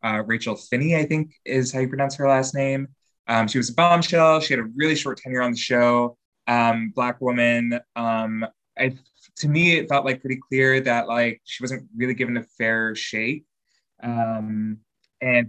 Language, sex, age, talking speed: English, male, 20-39, 185 wpm